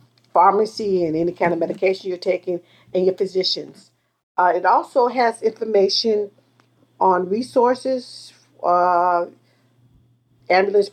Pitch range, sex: 165-210 Hz, female